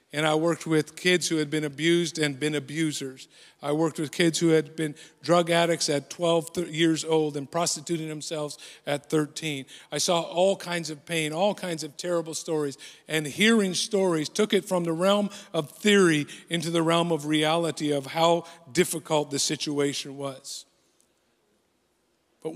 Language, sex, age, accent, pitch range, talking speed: English, male, 50-69, American, 145-170 Hz, 170 wpm